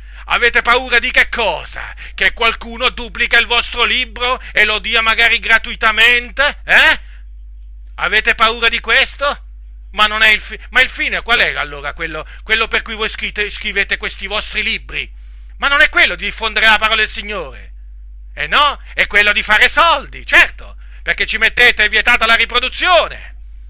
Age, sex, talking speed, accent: 40-59, male, 165 wpm, native